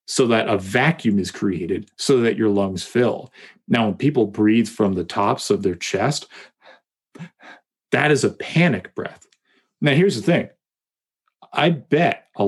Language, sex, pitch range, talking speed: English, male, 100-125 Hz, 160 wpm